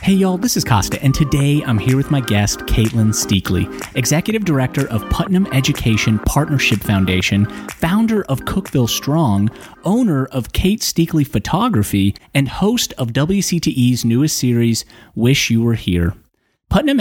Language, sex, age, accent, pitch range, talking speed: English, male, 30-49, American, 110-155 Hz, 145 wpm